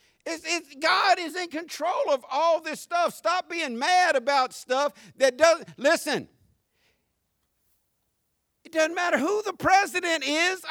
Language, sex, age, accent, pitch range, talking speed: English, male, 50-69, American, 195-300 Hz, 130 wpm